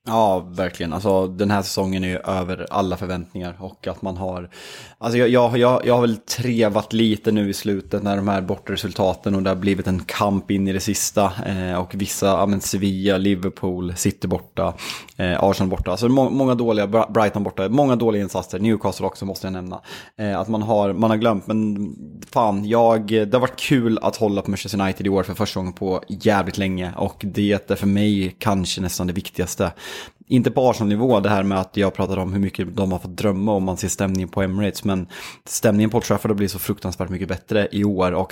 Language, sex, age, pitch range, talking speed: Swedish, male, 20-39, 95-105 Hz, 215 wpm